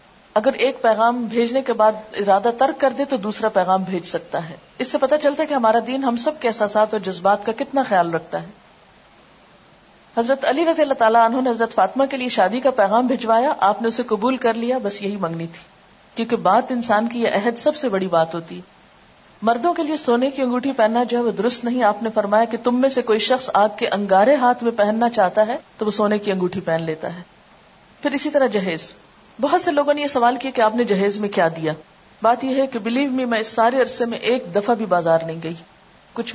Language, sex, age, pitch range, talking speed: Urdu, female, 40-59, 195-240 Hz, 240 wpm